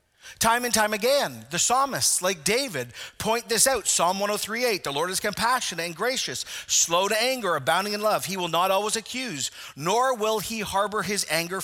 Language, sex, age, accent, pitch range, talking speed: English, male, 40-59, American, 165-230 Hz, 185 wpm